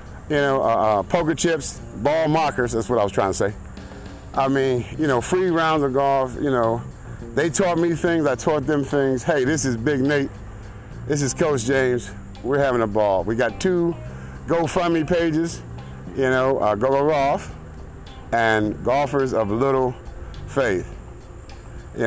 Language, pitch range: English, 105-150 Hz